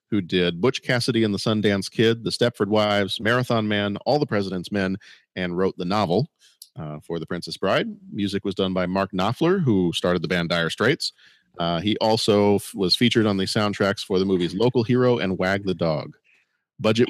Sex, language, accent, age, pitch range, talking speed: male, English, American, 40-59, 95-125 Hz, 195 wpm